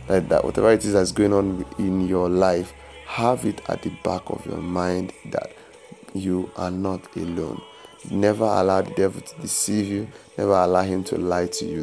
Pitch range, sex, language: 90-105 Hz, male, English